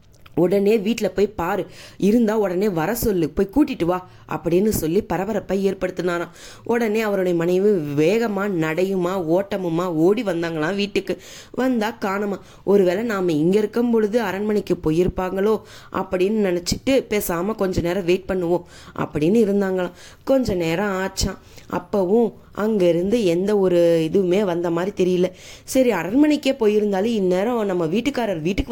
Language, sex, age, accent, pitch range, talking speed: English, female, 20-39, Indian, 180-225 Hz, 110 wpm